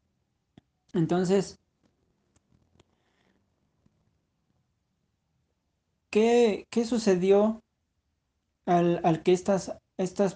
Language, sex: Spanish, male